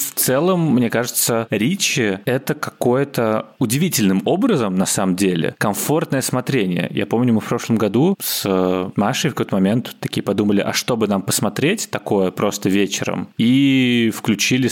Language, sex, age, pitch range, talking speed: Russian, male, 20-39, 100-125 Hz, 150 wpm